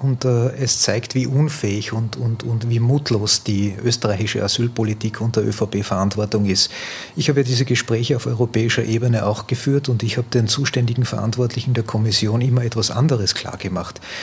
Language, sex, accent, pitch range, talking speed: German, male, Austrian, 110-130 Hz, 160 wpm